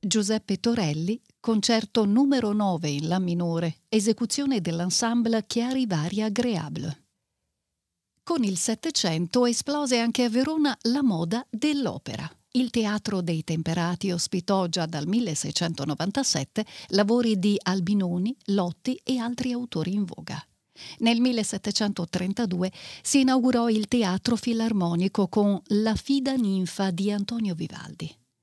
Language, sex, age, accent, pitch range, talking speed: Italian, female, 50-69, native, 175-240 Hz, 115 wpm